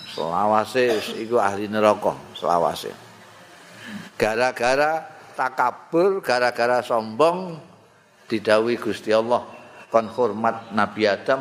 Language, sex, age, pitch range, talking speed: Indonesian, male, 50-69, 110-160 Hz, 85 wpm